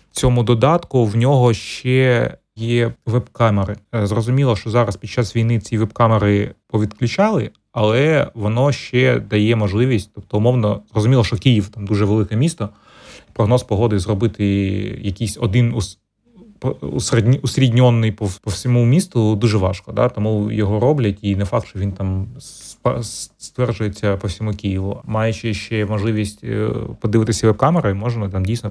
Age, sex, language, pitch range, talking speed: 30-49, male, Ukrainian, 105-120 Hz, 135 wpm